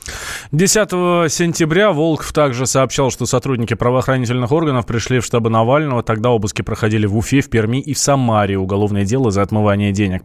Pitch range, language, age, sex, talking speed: 110-145 Hz, Russian, 20-39, male, 165 wpm